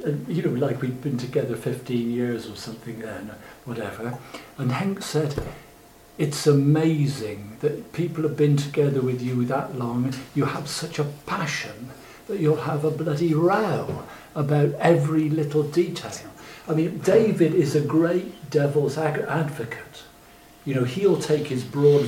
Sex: male